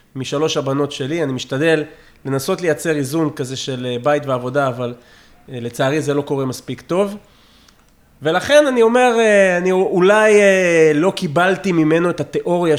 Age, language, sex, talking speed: 30-49, Hebrew, male, 135 wpm